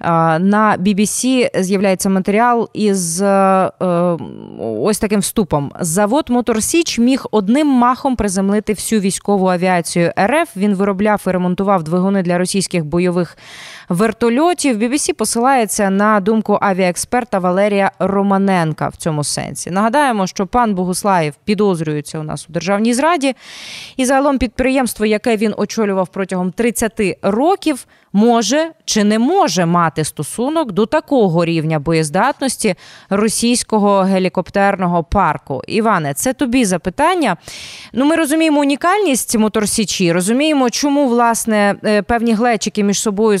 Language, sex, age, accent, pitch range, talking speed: Ukrainian, female, 20-39, native, 185-240 Hz, 120 wpm